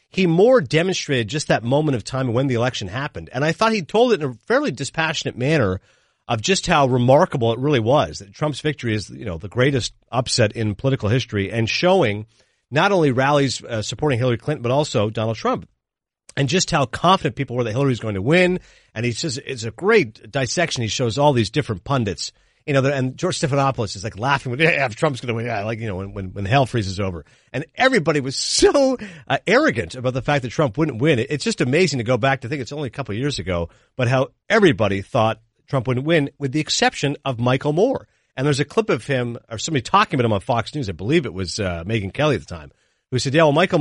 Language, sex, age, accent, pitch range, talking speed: English, male, 40-59, American, 115-155 Hz, 240 wpm